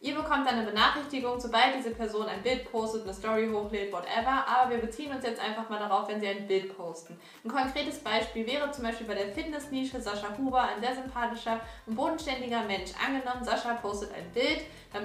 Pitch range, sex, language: 225-260 Hz, female, German